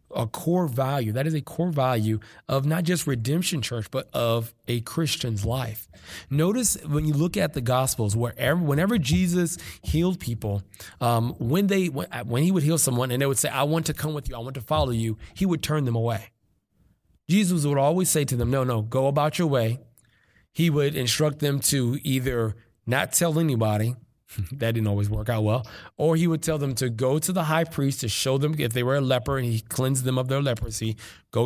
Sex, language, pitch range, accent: male, English, 115-160 Hz, American